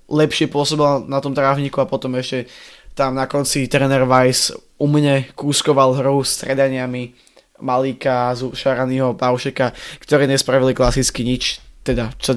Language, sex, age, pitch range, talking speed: Slovak, male, 20-39, 125-145 Hz, 130 wpm